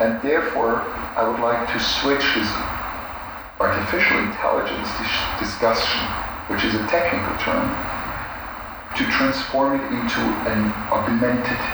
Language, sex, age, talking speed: English, male, 50-69, 110 wpm